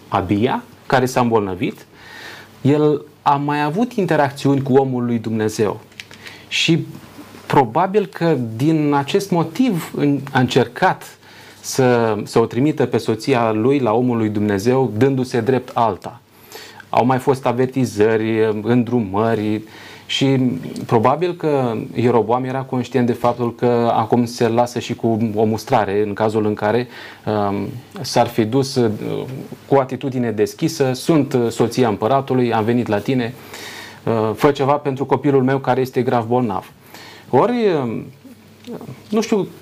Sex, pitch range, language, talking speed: male, 115-140 Hz, Romanian, 130 wpm